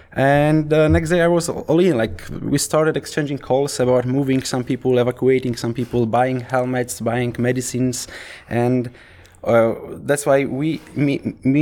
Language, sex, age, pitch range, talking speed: English, male, 20-39, 105-130 Hz, 160 wpm